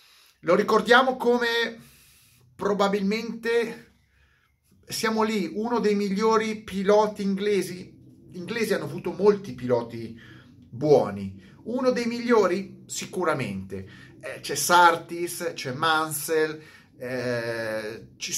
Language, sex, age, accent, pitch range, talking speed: Italian, male, 30-49, native, 120-170 Hz, 95 wpm